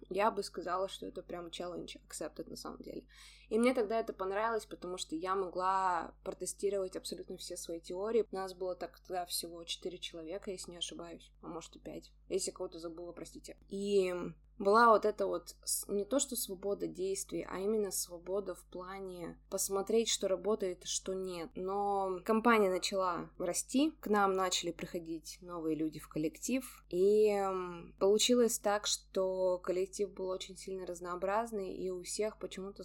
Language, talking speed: Russian, 165 wpm